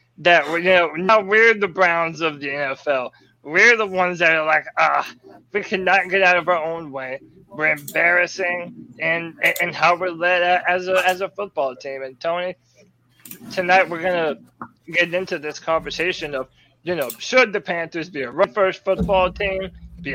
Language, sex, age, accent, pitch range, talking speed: English, male, 20-39, American, 155-190 Hz, 180 wpm